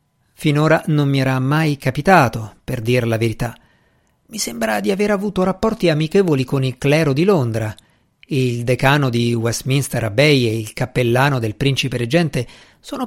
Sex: male